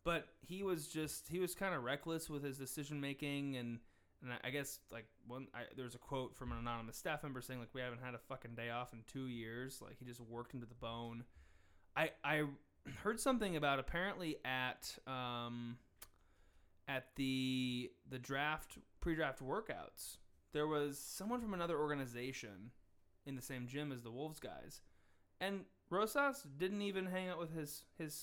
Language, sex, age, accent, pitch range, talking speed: English, male, 20-39, American, 115-155 Hz, 180 wpm